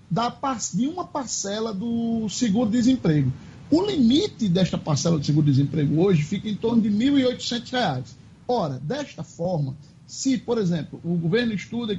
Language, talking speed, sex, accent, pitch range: Portuguese, 135 wpm, male, Brazilian, 175-240 Hz